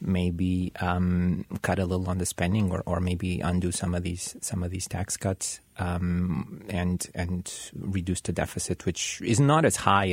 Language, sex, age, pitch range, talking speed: English, male, 30-49, 90-100 Hz, 185 wpm